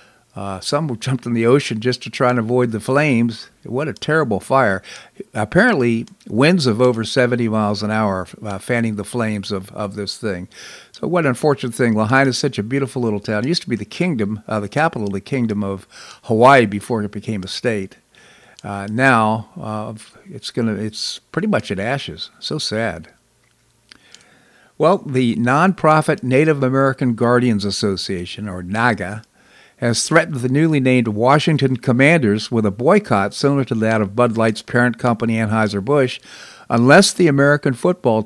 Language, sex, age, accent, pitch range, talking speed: English, male, 60-79, American, 110-135 Hz, 170 wpm